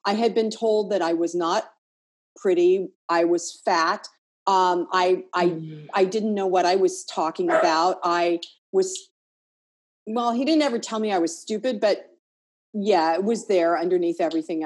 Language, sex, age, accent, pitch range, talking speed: English, female, 40-59, American, 190-235 Hz, 170 wpm